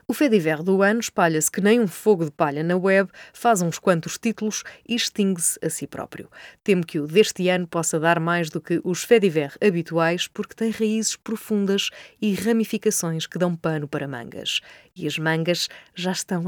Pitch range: 160-205 Hz